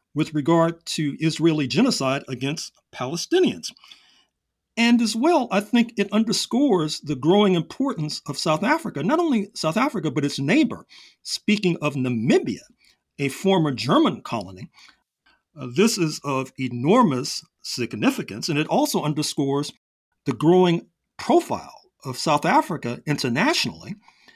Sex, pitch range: male, 135-200 Hz